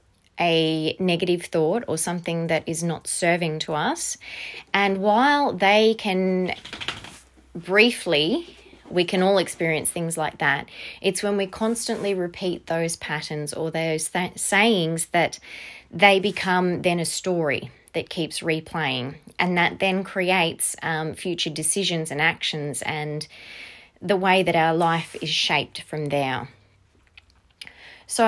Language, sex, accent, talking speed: English, female, Australian, 130 wpm